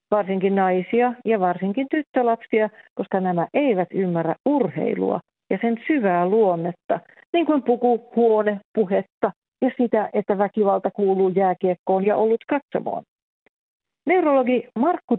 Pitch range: 190-245 Hz